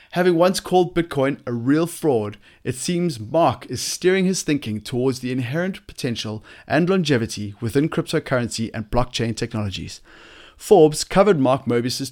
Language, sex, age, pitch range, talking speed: English, male, 30-49, 110-155 Hz, 145 wpm